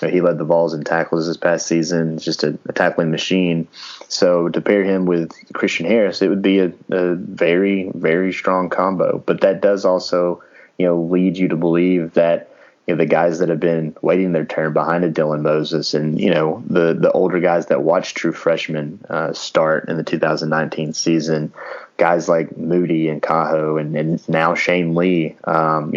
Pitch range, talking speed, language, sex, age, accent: 80-90 Hz, 190 wpm, English, male, 20-39, American